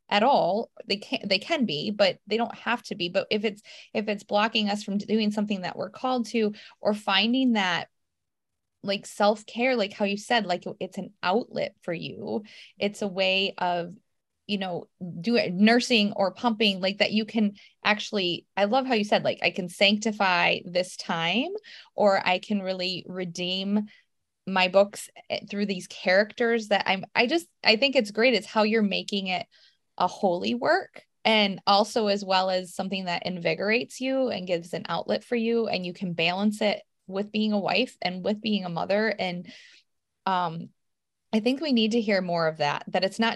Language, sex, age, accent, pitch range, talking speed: English, female, 20-39, American, 180-225 Hz, 190 wpm